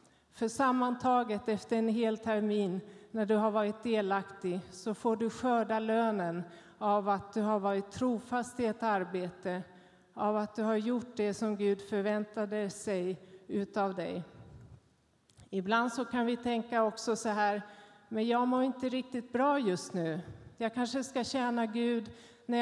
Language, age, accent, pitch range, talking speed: Swedish, 40-59, native, 195-235 Hz, 155 wpm